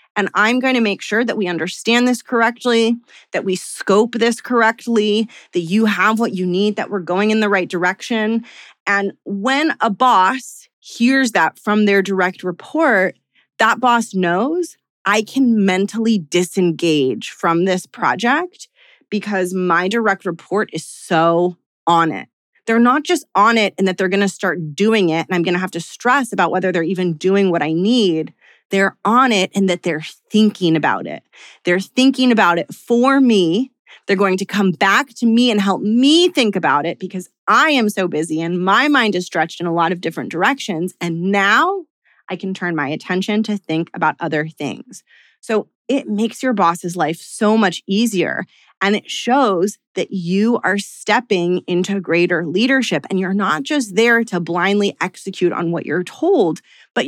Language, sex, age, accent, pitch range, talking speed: English, female, 20-39, American, 180-230 Hz, 180 wpm